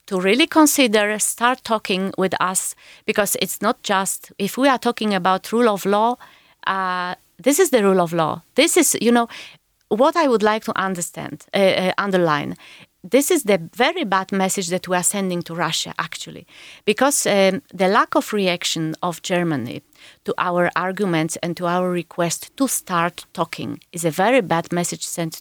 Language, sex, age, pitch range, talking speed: English, female, 30-49, 170-225 Hz, 180 wpm